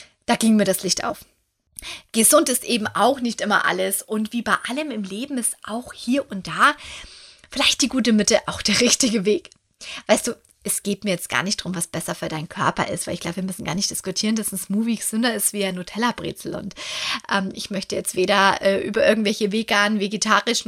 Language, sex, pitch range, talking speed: German, female, 200-265 Hz, 220 wpm